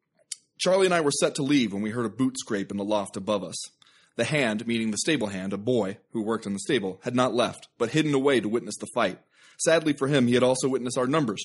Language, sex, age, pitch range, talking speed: English, male, 30-49, 115-155 Hz, 260 wpm